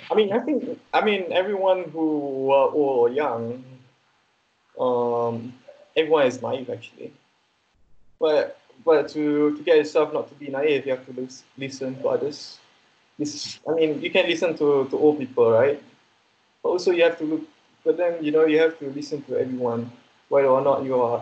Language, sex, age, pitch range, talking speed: English, male, 20-39, 130-175 Hz, 185 wpm